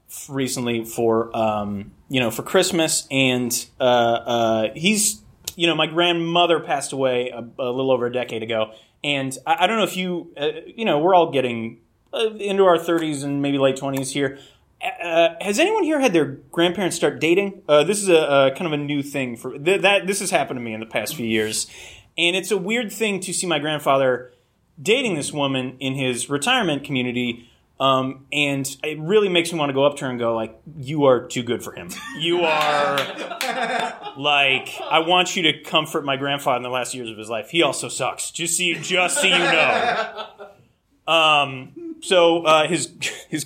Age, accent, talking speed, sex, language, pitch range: 30-49, American, 200 wpm, male, English, 135-180 Hz